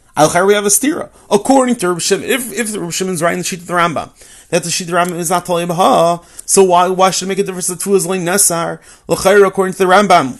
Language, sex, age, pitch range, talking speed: English, male, 30-49, 170-200 Hz, 260 wpm